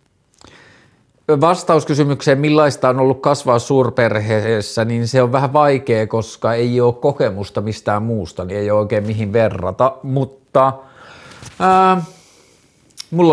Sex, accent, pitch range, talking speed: male, native, 110-130 Hz, 115 wpm